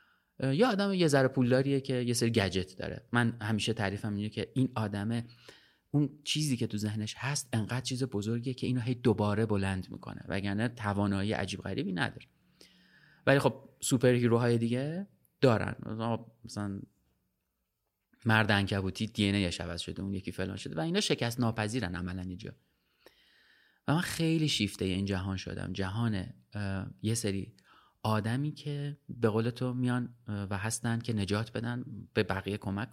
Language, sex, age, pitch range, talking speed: Persian, male, 30-49, 100-125 Hz, 150 wpm